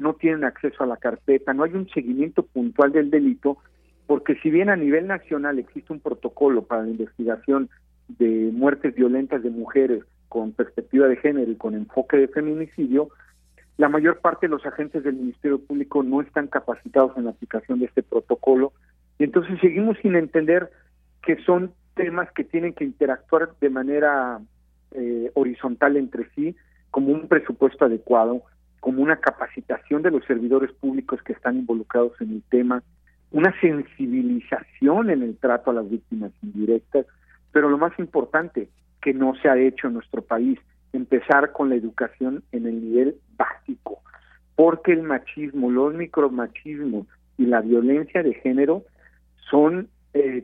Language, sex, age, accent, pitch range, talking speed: Spanish, male, 40-59, Mexican, 120-160 Hz, 160 wpm